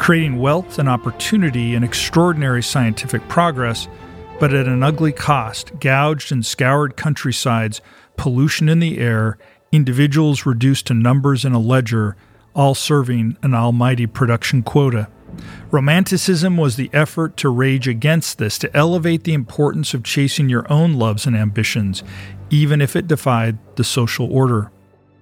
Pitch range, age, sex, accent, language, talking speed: 115-155 Hz, 40-59, male, American, English, 145 wpm